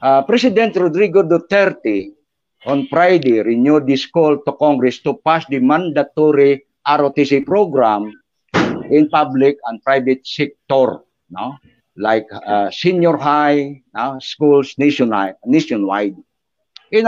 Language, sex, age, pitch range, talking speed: Filipino, male, 50-69, 125-170 Hz, 105 wpm